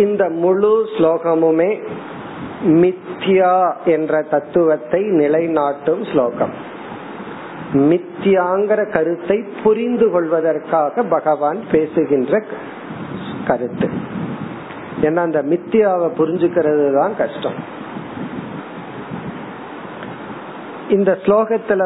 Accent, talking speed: native, 45 wpm